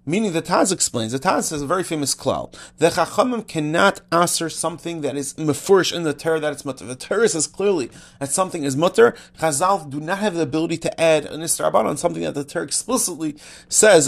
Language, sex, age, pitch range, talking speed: English, male, 30-49, 150-190 Hz, 210 wpm